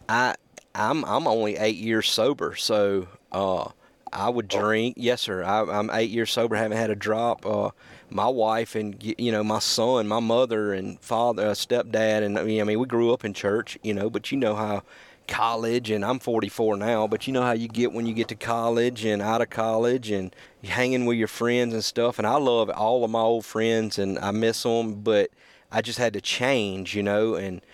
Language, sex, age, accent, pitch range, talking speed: English, male, 30-49, American, 105-120 Hz, 220 wpm